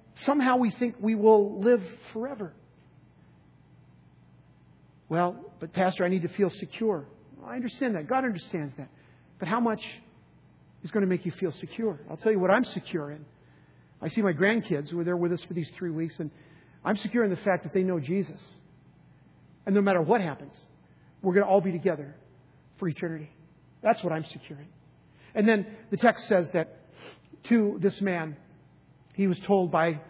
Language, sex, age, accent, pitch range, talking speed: English, male, 50-69, American, 165-220 Hz, 185 wpm